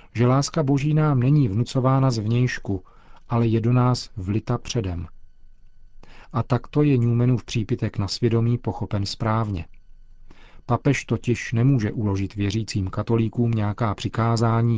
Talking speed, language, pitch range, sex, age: 125 wpm, Czech, 105-120 Hz, male, 40-59